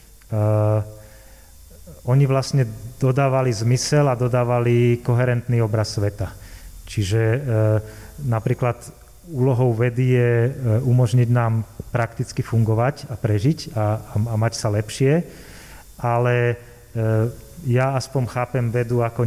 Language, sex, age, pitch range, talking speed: Slovak, male, 30-49, 110-130 Hz, 100 wpm